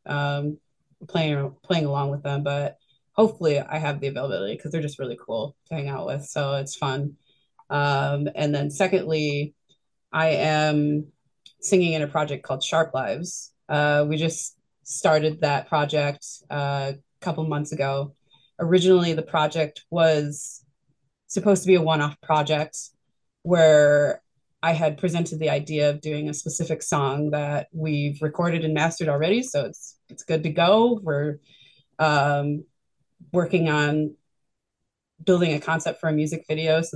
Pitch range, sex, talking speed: 145-160 Hz, female, 150 wpm